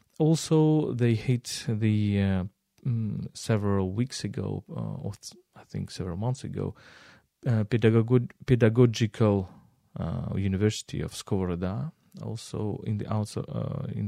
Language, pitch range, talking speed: English, 95-125 Hz, 125 wpm